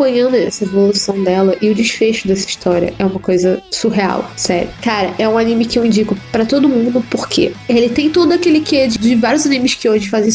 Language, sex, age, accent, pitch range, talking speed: Portuguese, female, 10-29, Brazilian, 205-255 Hz, 215 wpm